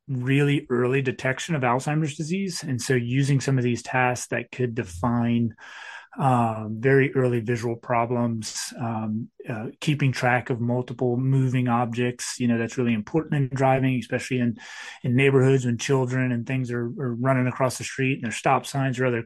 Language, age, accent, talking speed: English, 30-49, American, 175 wpm